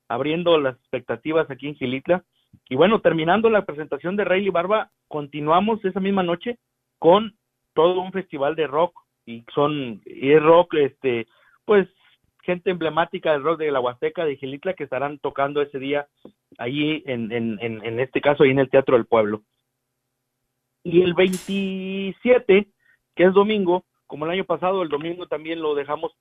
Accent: Mexican